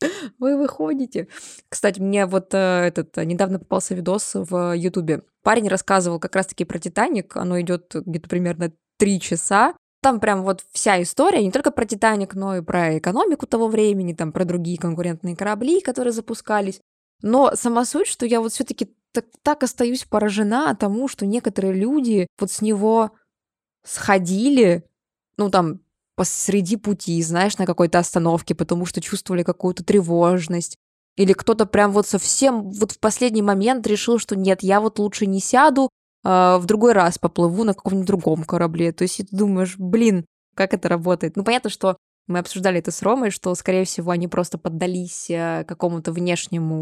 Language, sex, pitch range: Russian, female, 180-220 Hz